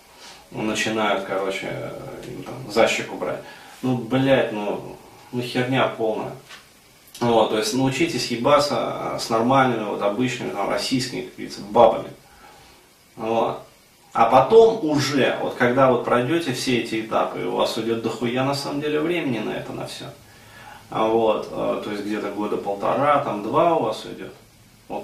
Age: 30-49